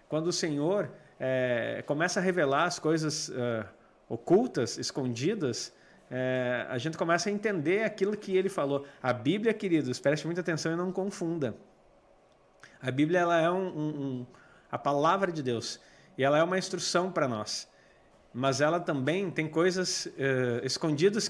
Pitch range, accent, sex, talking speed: 140-190 Hz, Brazilian, male, 160 wpm